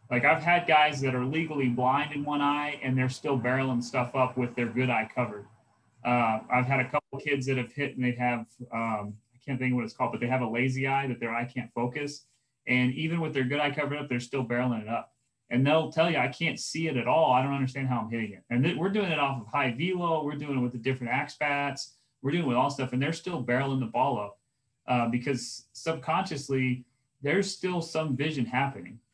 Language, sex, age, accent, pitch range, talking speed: English, male, 30-49, American, 120-145 Hz, 250 wpm